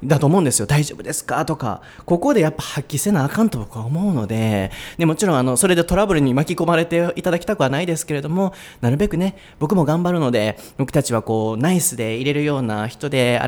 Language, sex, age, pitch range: Japanese, male, 20-39, 110-160 Hz